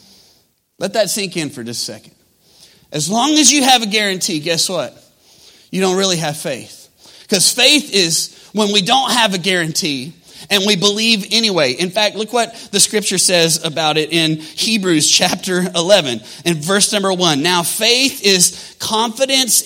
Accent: American